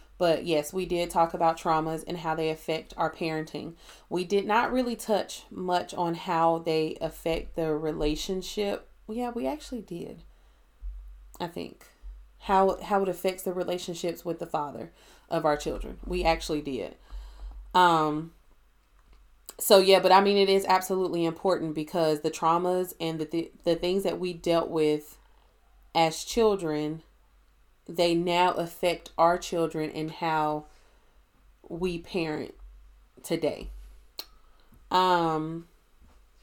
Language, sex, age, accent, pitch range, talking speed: English, female, 30-49, American, 155-180 Hz, 135 wpm